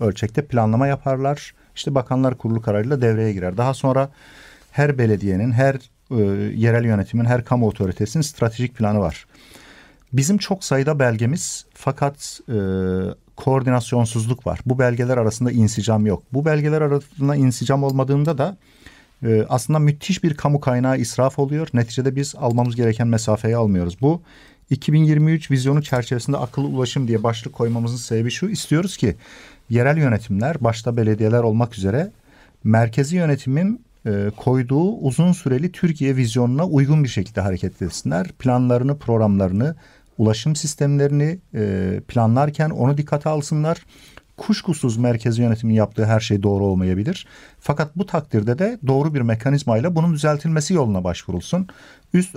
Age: 50-69